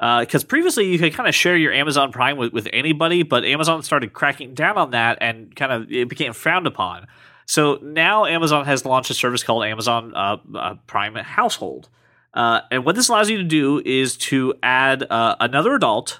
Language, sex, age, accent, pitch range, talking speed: English, male, 30-49, American, 120-165 Hz, 205 wpm